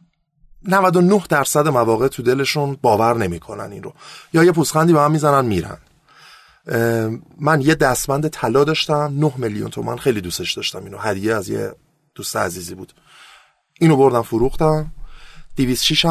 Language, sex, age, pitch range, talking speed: Persian, male, 30-49, 120-155 Hz, 140 wpm